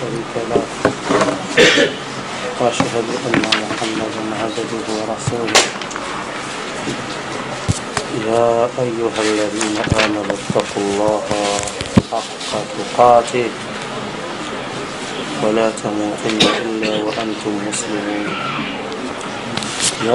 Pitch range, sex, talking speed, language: 105-115 Hz, male, 55 wpm, Swahili